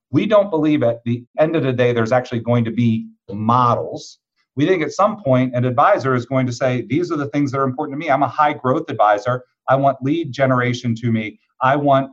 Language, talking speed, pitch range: English, 235 wpm, 120-150 Hz